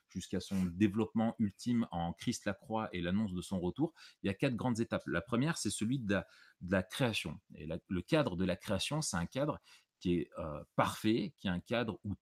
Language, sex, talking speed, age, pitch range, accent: French, male, 230 wpm, 30-49, 90-120 Hz, French